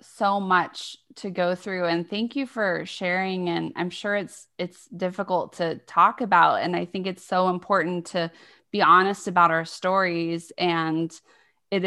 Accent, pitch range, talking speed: American, 170-190 Hz, 165 wpm